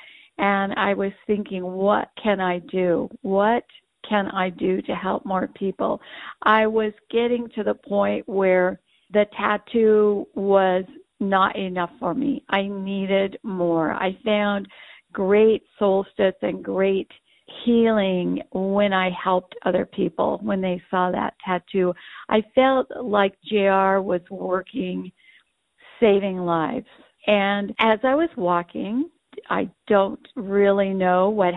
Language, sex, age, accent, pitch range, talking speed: English, female, 50-69, American, 185-220 Hz, 130 wpm